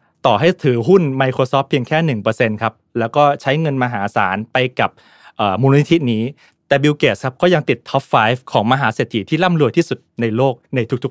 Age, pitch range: 20-39, 115-160 Hz